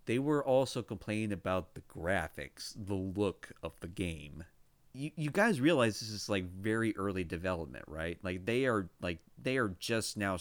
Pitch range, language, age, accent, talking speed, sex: 90-110 Hz, English, 30-49, American, 180 wpm, male